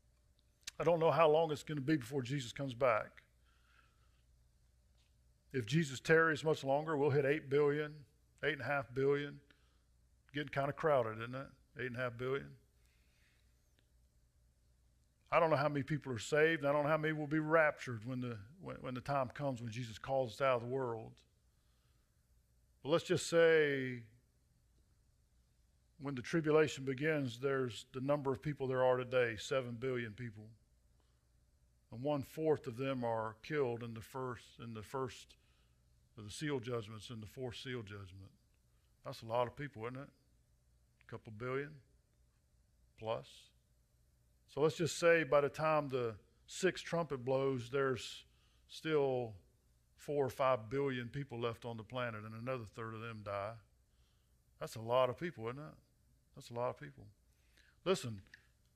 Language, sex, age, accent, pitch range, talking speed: English, male, 50-69, American, 90-145 Hz, 165 wpm